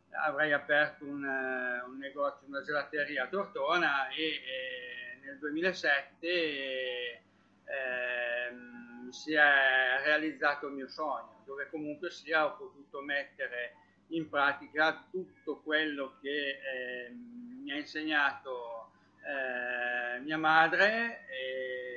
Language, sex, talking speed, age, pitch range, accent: Italian, male, 105 wpm, 60-79, 130-155 Hz, native